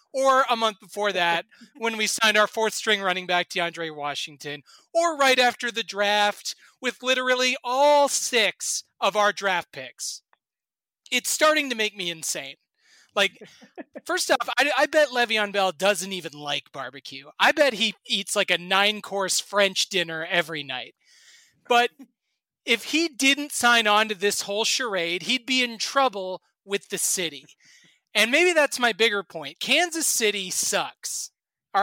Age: 30-49